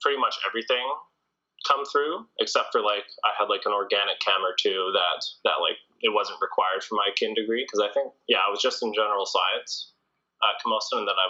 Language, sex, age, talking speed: English, male, 20-39, 210 wpm